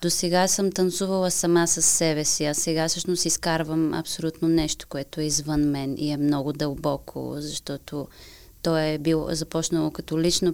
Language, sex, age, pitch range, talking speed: Bulgarian, female, 20-39, 150-175 Hz, 160 wpm